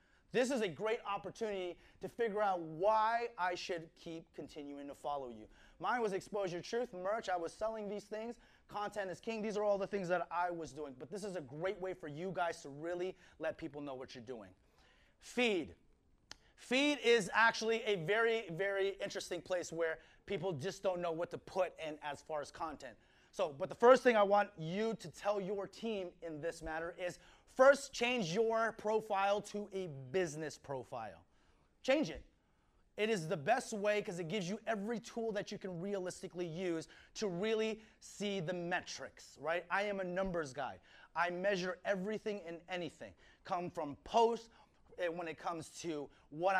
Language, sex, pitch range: English, male, 165-210 Hz